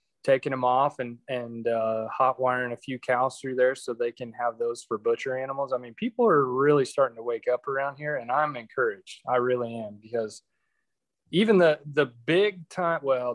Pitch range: 120-135 Hz